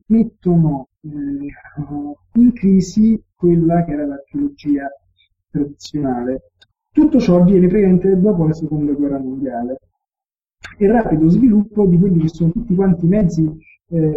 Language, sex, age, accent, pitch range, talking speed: Italian, male, 20-39, native, 145-190 Hz, 125 wpm